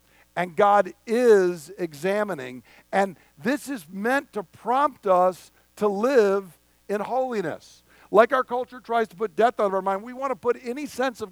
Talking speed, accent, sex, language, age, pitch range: 175 wpm, American, male, English, 50-69, 170-235 Hz